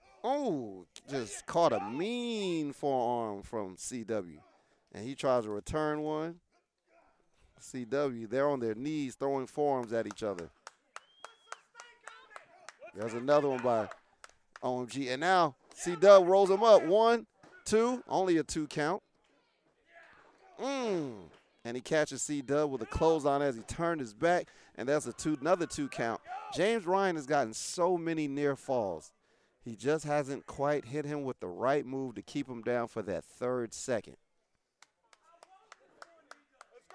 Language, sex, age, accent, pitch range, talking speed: English, male, 30-49, American, 125-180 Hz, 140 wpm